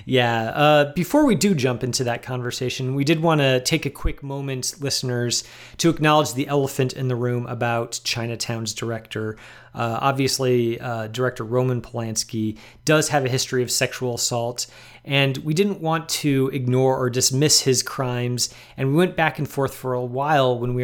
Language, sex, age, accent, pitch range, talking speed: English, male, 30-49, American, 120-140 Hz, 180 wpm